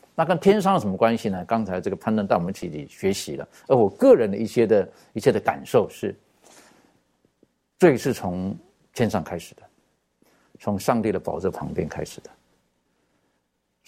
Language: Chinese